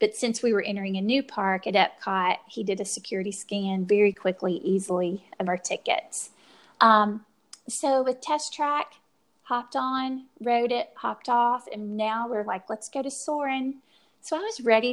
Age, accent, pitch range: 30-49, American, 200-245 Hz